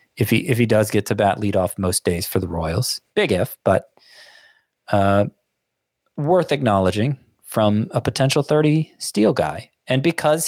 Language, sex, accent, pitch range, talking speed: English, male, American, 100-135 Hz, 155 wpm